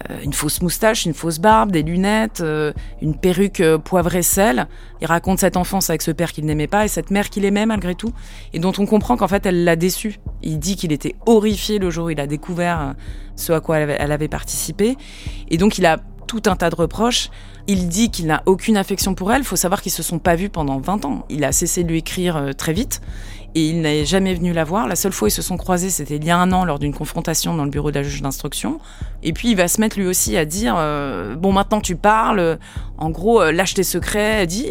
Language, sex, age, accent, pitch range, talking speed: French, female, 20-39, French, 150-205 Hz, 250 wpm